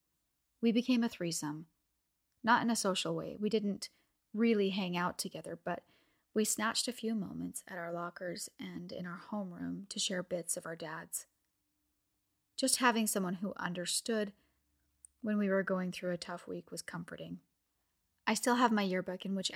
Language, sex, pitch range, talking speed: English, female, 170-210 Hz, 170 wpm